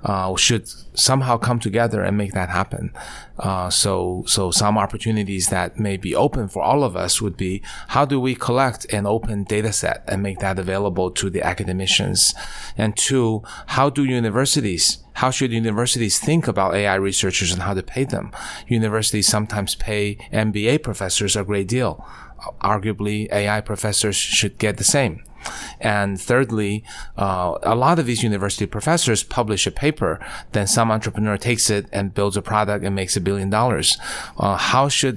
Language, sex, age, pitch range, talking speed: English, male, 30-49, 100-120 Hz, 170 wpm